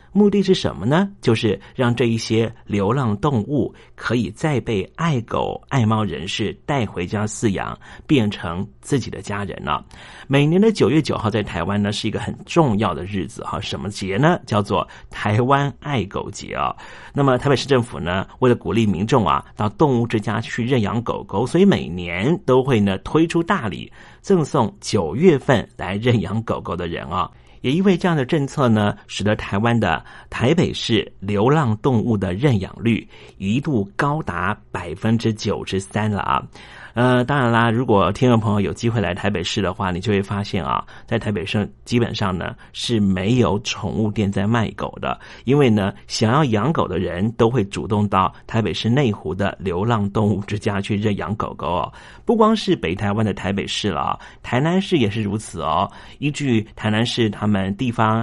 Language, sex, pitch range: Chinese, male, 100-130 Hz